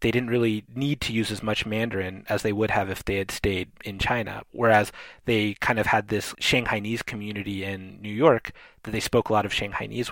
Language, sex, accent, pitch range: English, male, American, 105-130 Hz